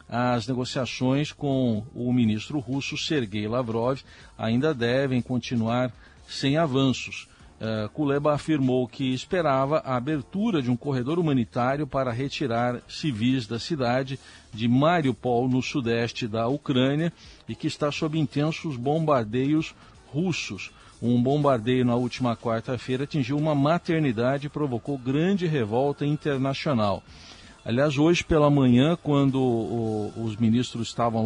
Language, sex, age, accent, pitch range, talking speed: Portuguese, male, 50-69, Brazilian, 120-150 Hz, 120 wpm